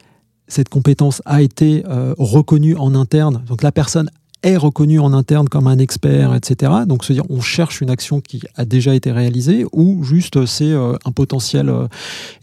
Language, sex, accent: French, male, French